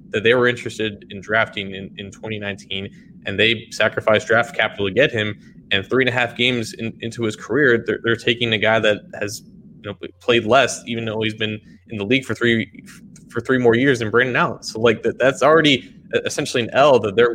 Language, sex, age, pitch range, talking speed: English, male, 20-39, 100-115 Hz, 225 wpm